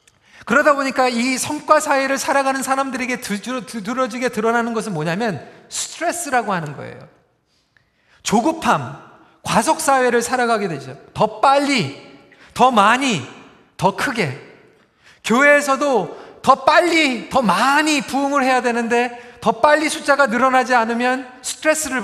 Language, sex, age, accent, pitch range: Korean, male, 40-59, native, 190-270 Hz